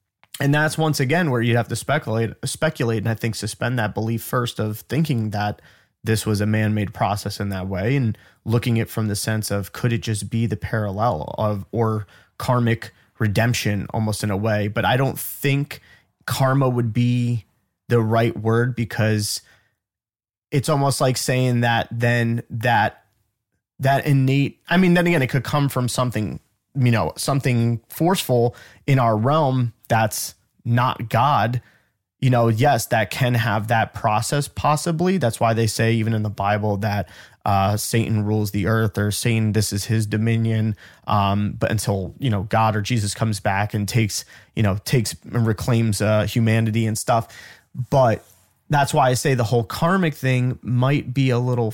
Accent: American